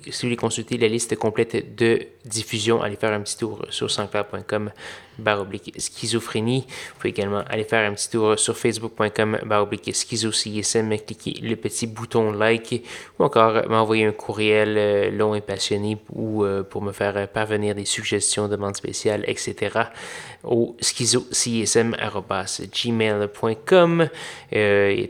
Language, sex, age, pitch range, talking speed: French, male, 20-39, 105-115 Hz, 135 wpm